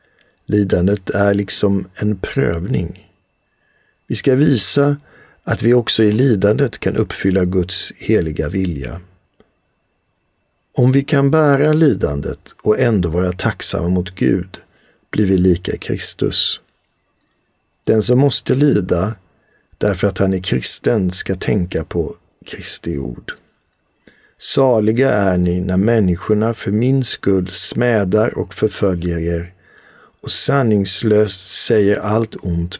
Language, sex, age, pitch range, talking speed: Swedish, male, 50-69, 90-115 Hz, 115 wpm